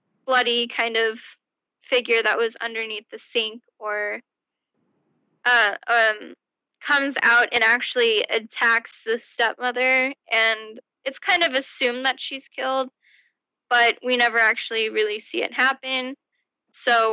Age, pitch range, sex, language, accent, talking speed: 10-29, 225-270 Hz, female, English, American, 125 wpm